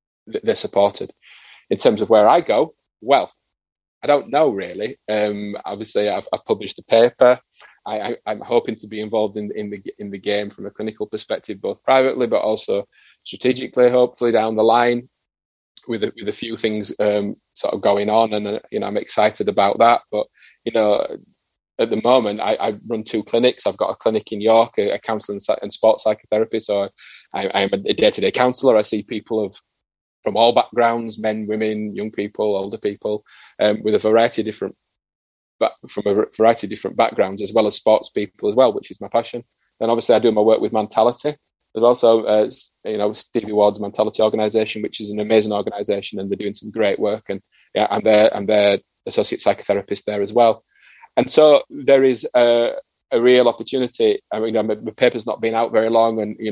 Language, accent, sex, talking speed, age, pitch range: English, British, male, 200 wpm, 20-39, 105-115 Hz